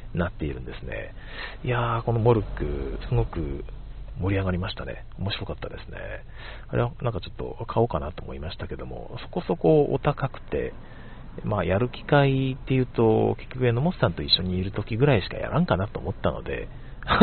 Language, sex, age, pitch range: Japanese, male, 50-69, 90-120 Hz